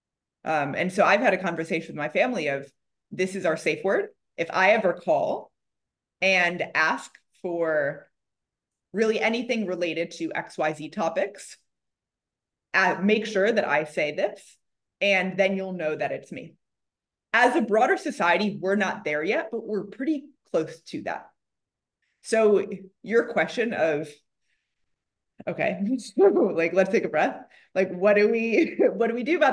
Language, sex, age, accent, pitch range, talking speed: English, female, 20-39, American, 170-220 Hz, 155 wpm